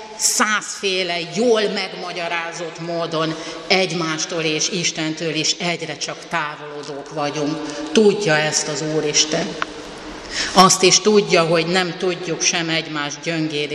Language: Hungarian